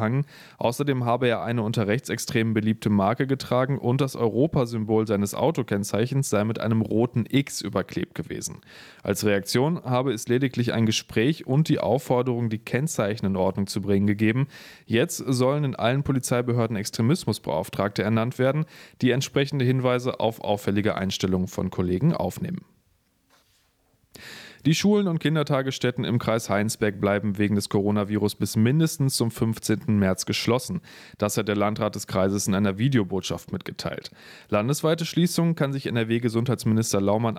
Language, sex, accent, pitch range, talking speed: German, male, German, 105-135 Hz, 140 wpm